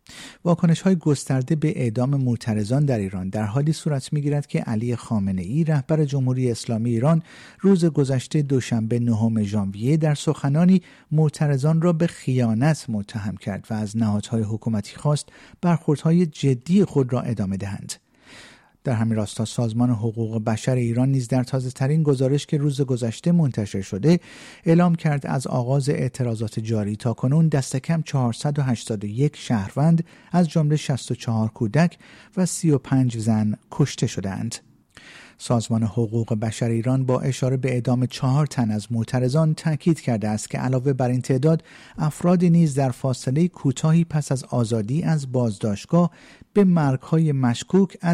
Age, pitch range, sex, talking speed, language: 50-69, 115-150 Hz, male, 140 wpm, Persian